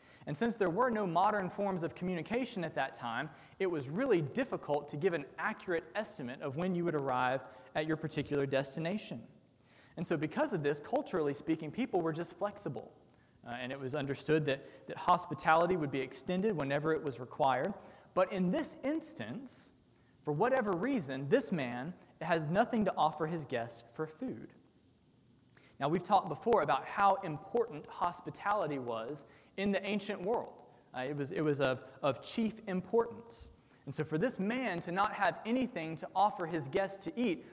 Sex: male